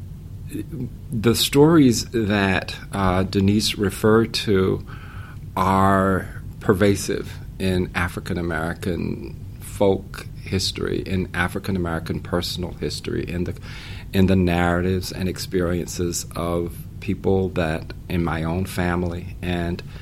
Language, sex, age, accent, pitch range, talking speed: English, male, 50-69, American, 90-110 Hz, 100 wpm